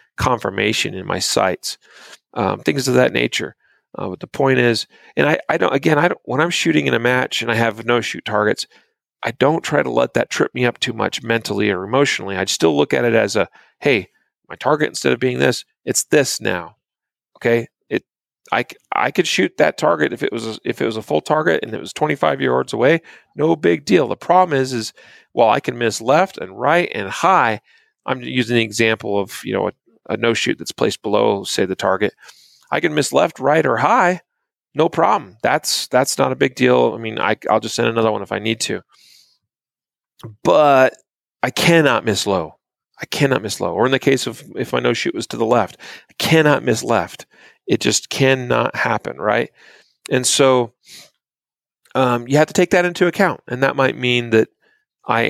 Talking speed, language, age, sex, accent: 210 wpm, English, 40-59, male, American